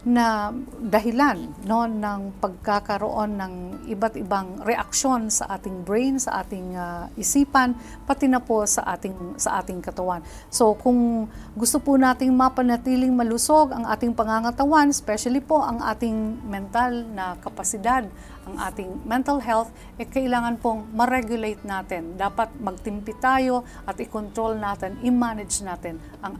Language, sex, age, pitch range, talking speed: Filipino, female, 50-69, 205-270 Hz, 135 wpm